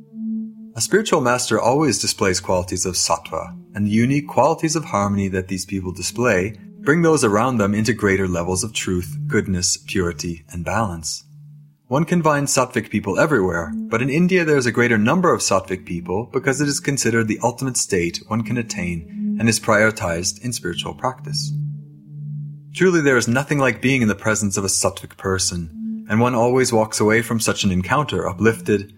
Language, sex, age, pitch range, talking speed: English, male, 30-49, 95-130 Hz, 180 wpm